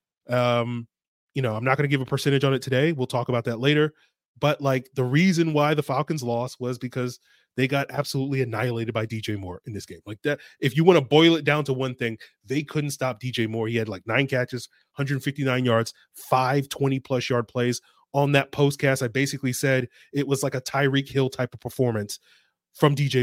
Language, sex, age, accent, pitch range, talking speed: English, male, 20-39, American, 130-160 Hz, 215 wpm